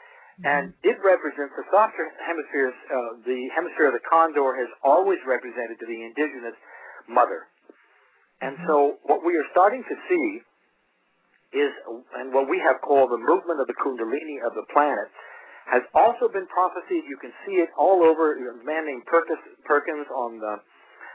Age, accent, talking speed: 50-69, American, 160 wpm